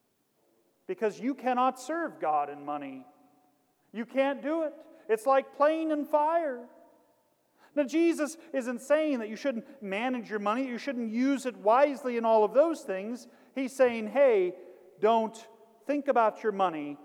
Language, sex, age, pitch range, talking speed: English, male, 40-59, 200-275 Hz, 155 wpm